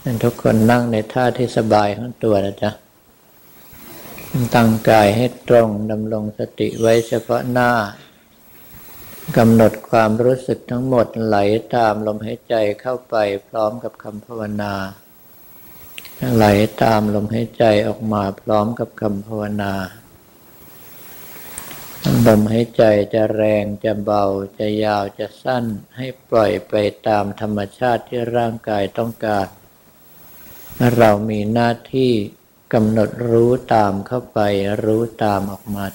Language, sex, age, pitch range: Thai, male, 60-79, 105-115 Hz